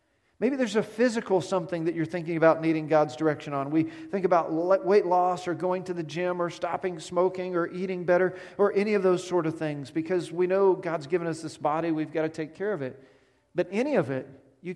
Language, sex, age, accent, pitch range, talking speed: English, male, 40-59, American, 140-180 Hz, 230 wpm